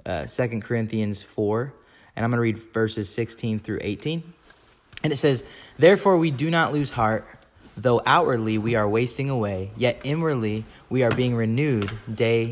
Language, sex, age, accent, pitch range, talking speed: English, male, 20-39, American, 110-140 Hz, 165 wpm